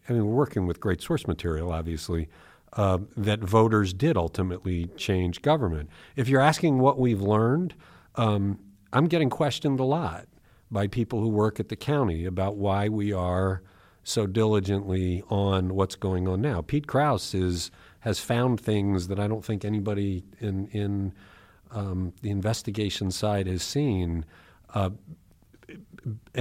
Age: 50-69